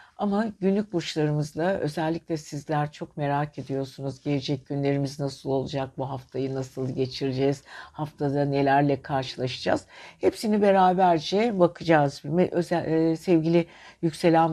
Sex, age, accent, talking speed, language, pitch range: female, 60-79, native, 100 wpm, Turkish, 145-180 Hz